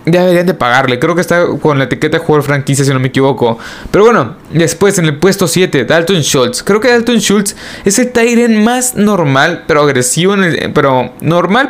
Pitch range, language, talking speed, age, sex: 140-180 Hz, Spanish, 195 wpm, 20-39, male